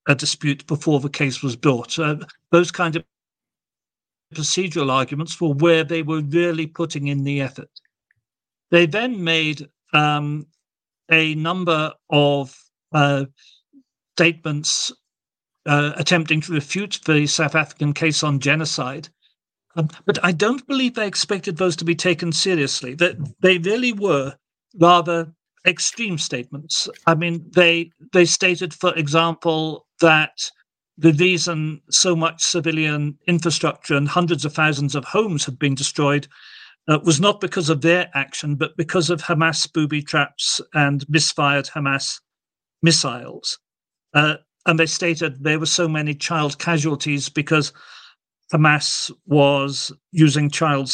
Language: English